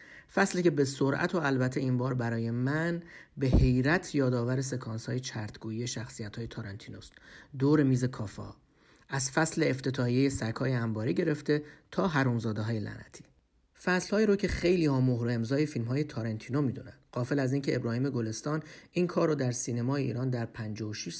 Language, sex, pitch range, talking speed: Persian, male, 115-145 Hz, 155 wpm